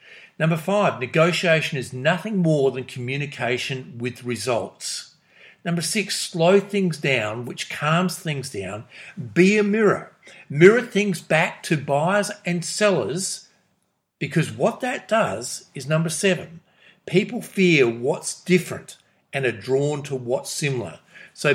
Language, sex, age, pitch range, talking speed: English, male, 50-69, 130-185 Hz, 130 wpm